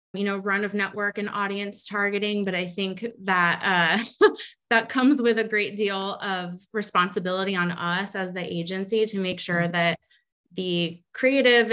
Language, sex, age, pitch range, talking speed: English, female, 20-39, 175-205 Hz, 165 wpm